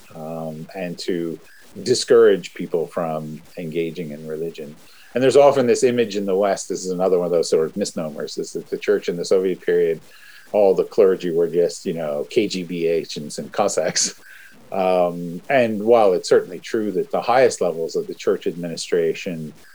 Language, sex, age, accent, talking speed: English, male, 50-69, American, 180 wpm